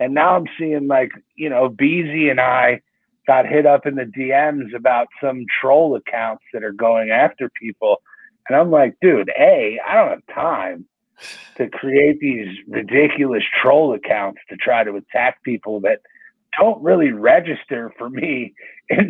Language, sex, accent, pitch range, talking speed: English, male, American, 130-175 Hz, 165 wpm